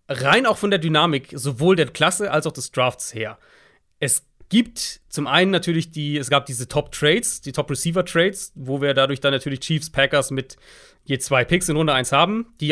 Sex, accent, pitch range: male, German, 135-175 Hz